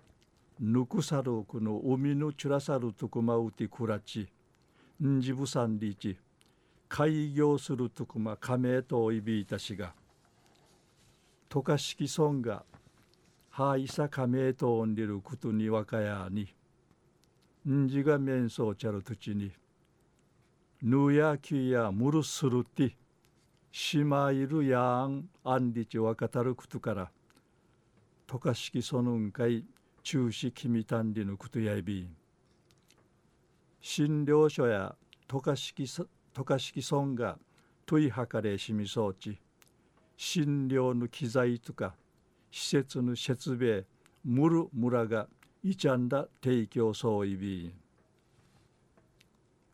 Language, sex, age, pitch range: Japanese, male, 60-79, 115-140 Hz